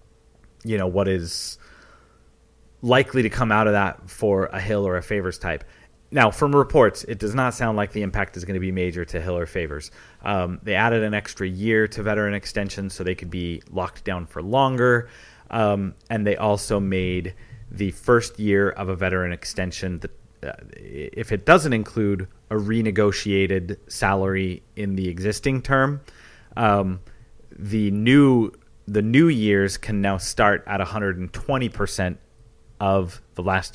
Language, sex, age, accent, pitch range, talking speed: English, male, 30-49, American, 95-115 Hz, 165 wpm